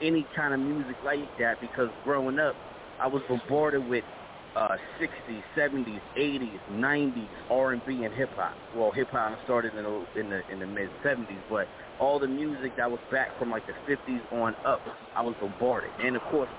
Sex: male